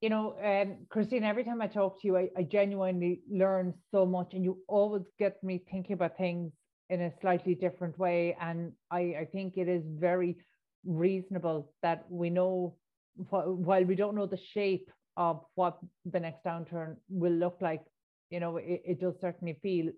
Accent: Irish